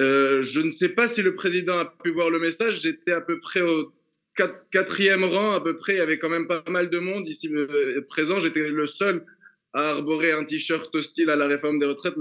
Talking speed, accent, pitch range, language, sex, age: 240 wpm, French, 150-180 Hz, French, male, 20-39